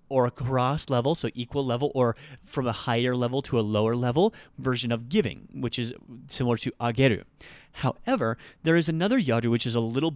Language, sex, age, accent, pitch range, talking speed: English, male, 30-49, American, 115-140 Hz, 190 wpm